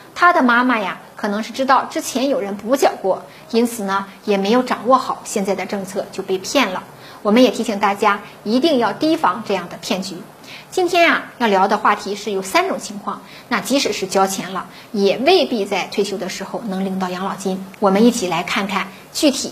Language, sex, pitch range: Chinese, female, 195-255 Hz